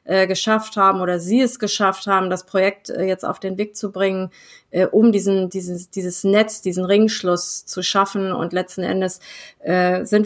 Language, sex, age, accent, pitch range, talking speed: German, female, 20-39, German, 190-220 Hz, 170 wpm